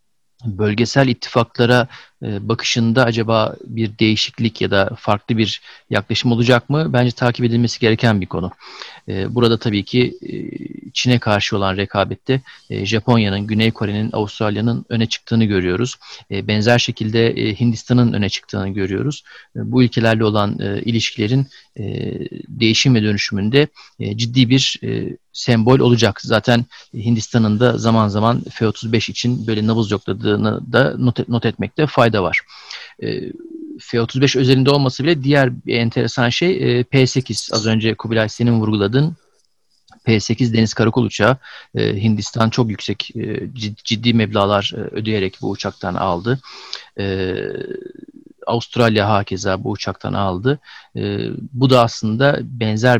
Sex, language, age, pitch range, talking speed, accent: male, Turkish, 40-59, 105-125 Hz, 125 wpm, native